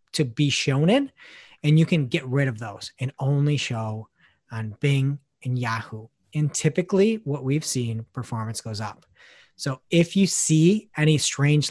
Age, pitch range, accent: 30-49, 130-170 Hz, American